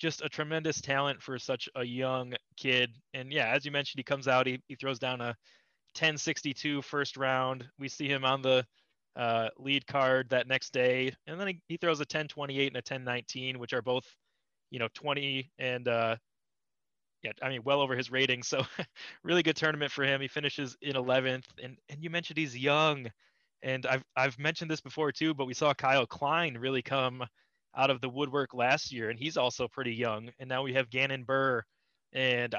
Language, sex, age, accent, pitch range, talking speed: English, male, 20-39, American, 125-145 Hz, 205 wpm